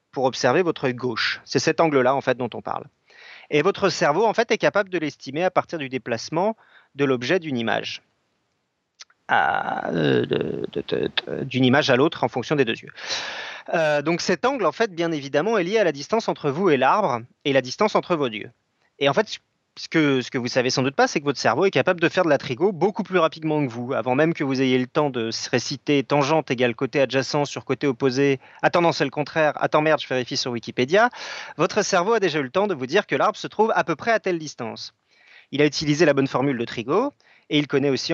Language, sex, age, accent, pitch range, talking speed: French, male, 30-49, French, 130-175 Hz, 235 wpm